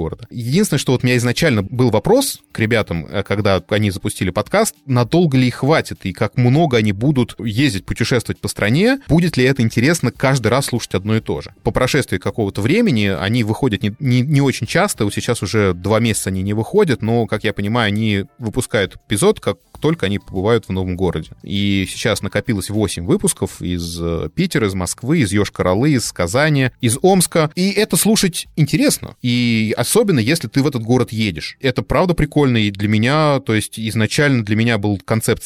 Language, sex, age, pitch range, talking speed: Russian, male, 20-39, 100-130 Hz, 190 wpm